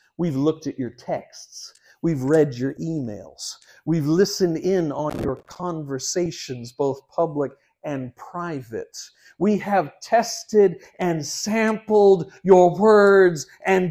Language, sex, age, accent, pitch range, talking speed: English, male, 50-69, American, 130-175 Hz, 115 wpm